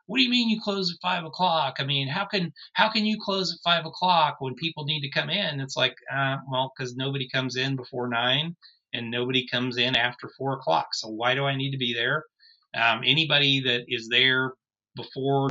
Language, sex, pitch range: English, male, 120-155 Hz